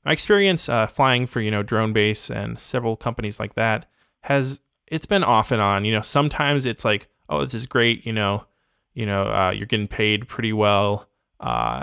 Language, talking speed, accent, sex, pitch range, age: English, 205 wpm, American, male, 100-125 Hz, 20-39